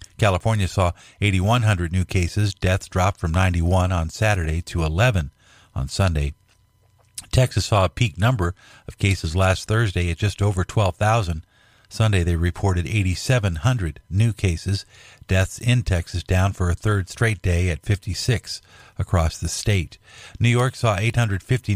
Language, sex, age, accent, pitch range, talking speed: English, male, 50-69, American, 90-115 Hz, 145 wpm